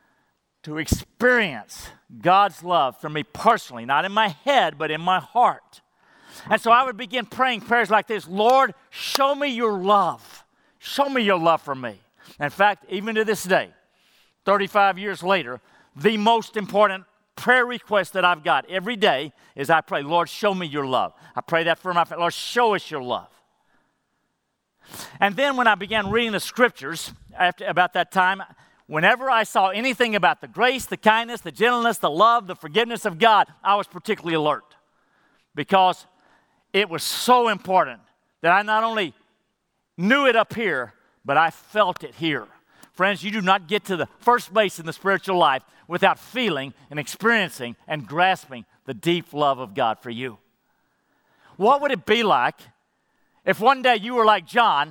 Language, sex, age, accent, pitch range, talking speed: English, male, 50-69, American, 165-230 Hz, 175 wpm